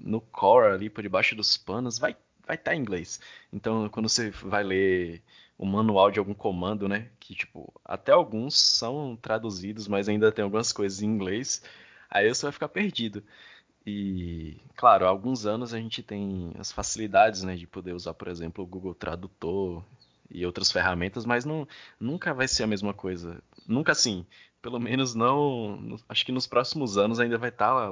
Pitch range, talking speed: 95-120 Hz, 185 wpm